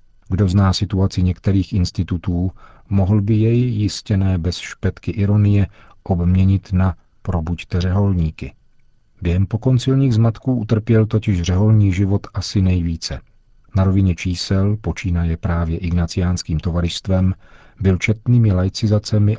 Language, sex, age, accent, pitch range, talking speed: Czech, male, 40-59, native, 85-105 Hz, 110 wpm